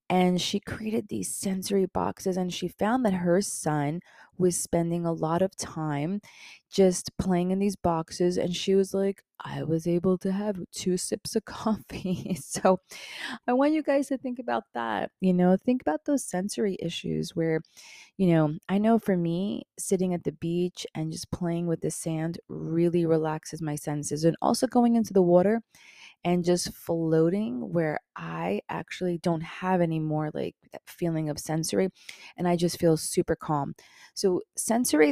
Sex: female